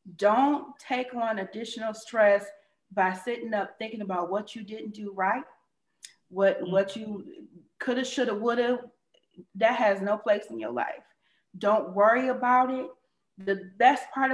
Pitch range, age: 210-275 Hz, 30-49